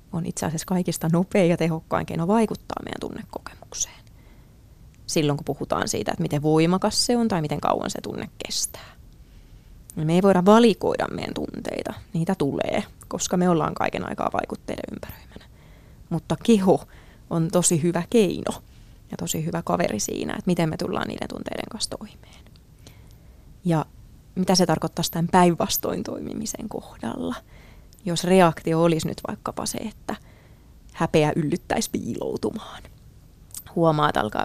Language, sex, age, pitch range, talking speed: Finnish, female, 20-39, 160-185 Hz, 140 wpm